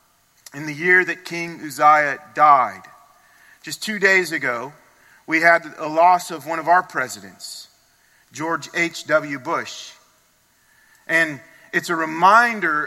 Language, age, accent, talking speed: English, 30-49, American, 125 wpm